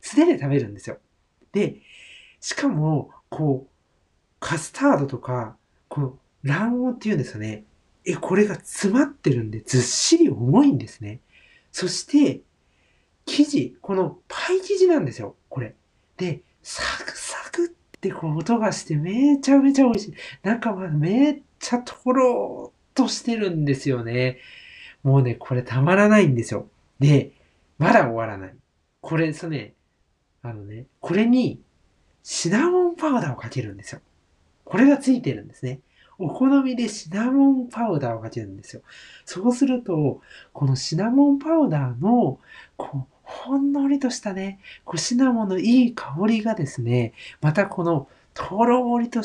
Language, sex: Japanese, male